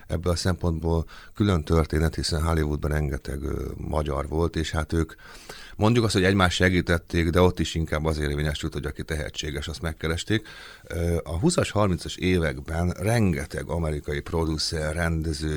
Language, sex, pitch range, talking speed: Hungarian, male, 80-95 Hz, 145 wpm